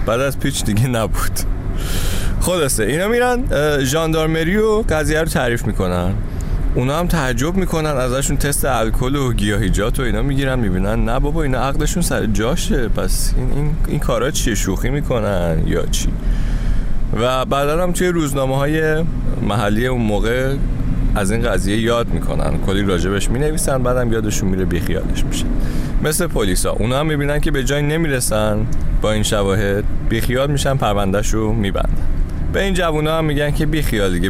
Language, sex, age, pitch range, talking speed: Persian, male, 30-49, 95-140 Hz, 150 wpm